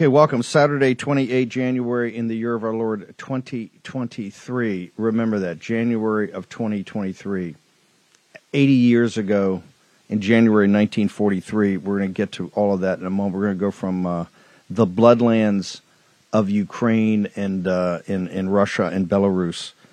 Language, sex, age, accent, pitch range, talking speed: English, male, 50-69, American, 90-110 Hz, 155 wpm